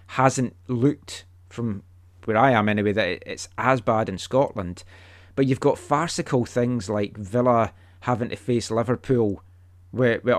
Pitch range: 95-130 Hz